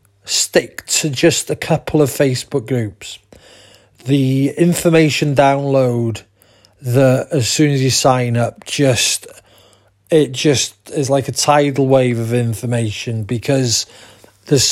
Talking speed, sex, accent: 120 wpm, male, British